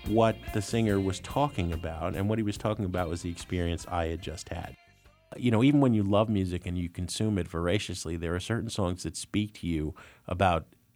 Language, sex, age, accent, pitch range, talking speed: English, male, 50-69, American, 85-105 Hz, 220 wpm